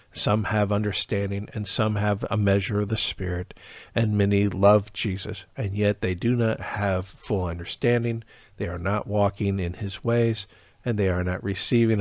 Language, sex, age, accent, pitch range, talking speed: English, male, 50-69, American, 95-110 Hz, 175 wpm